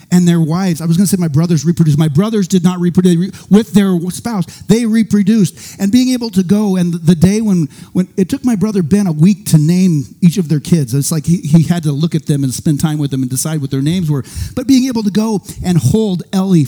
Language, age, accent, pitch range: English, 40-59, American, 165-205 Hz